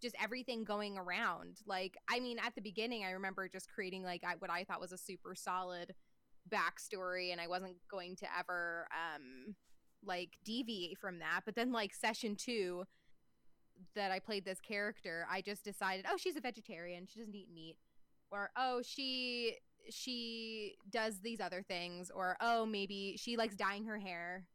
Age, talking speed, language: 20-39, 175 wpm, English